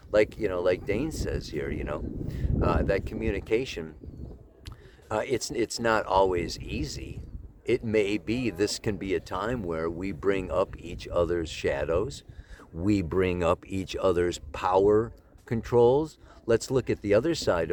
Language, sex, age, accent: English, male, 50-69, American